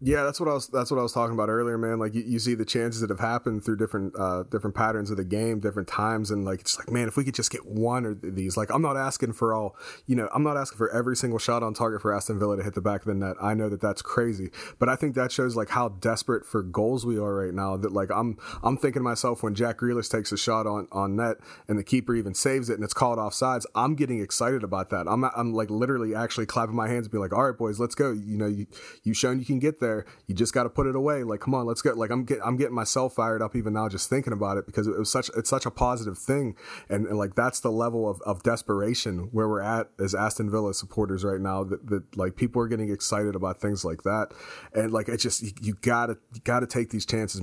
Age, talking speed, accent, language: 30-49, 285 wpm, American, English